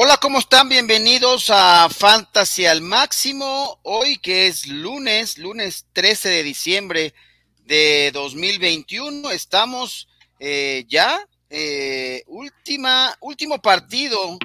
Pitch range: 140-210 Hz